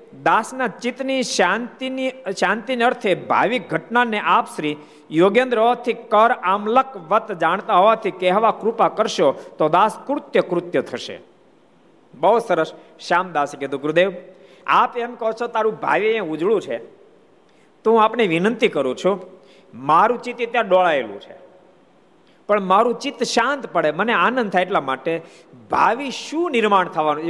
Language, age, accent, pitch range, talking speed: Gujarati, 50-69, native, 175-245 Hz, 60 wpm